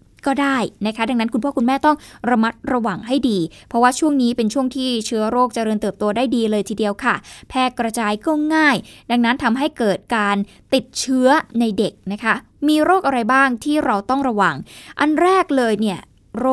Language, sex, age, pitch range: Thai, female, 20-39, 215-265 Hz